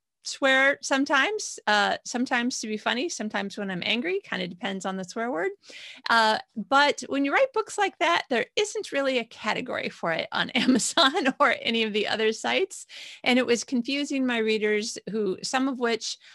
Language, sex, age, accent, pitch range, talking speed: English, female, 30-49, American, 185-245 Hz, 185 wpm